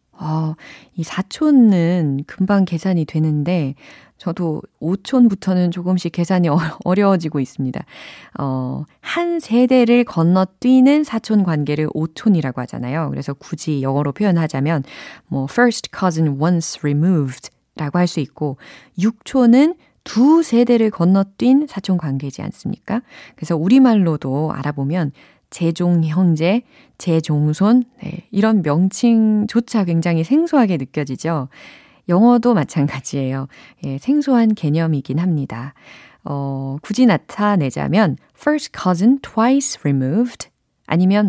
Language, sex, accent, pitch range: Korean, female, native, 150-230 Hz